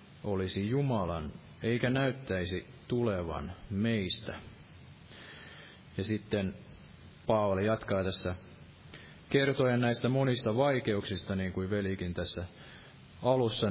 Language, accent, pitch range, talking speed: Finnish, native, 95-130 Hz, 90 wpm